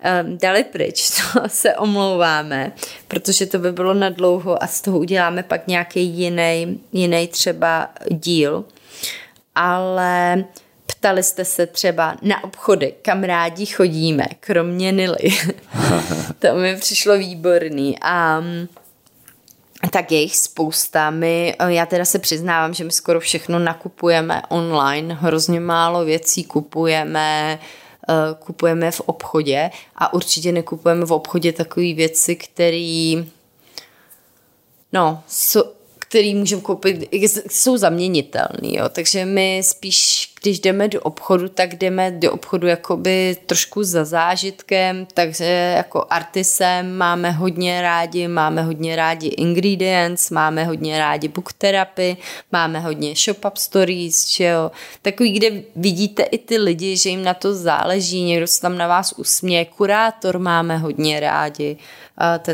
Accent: native